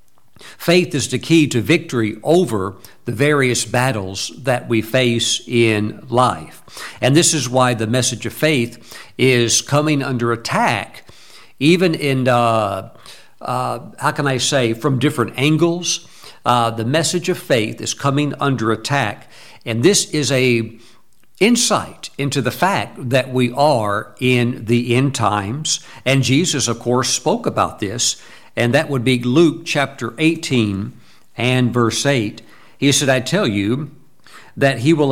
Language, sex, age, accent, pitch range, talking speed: English, male, 60-79, American, 120-150 Hz, 150 wpm